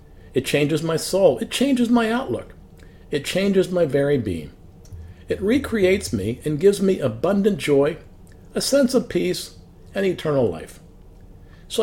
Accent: American